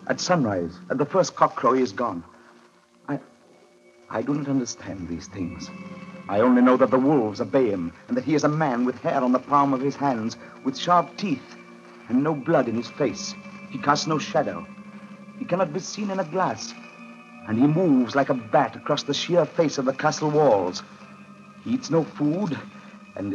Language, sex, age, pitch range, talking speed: English, male, 60-79, 115-185 Hz, 195 wpm